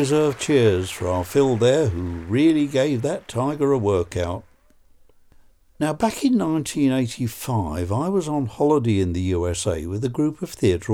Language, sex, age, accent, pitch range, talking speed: English, male, 60-79, British, 100-150 Hz, 165 wpm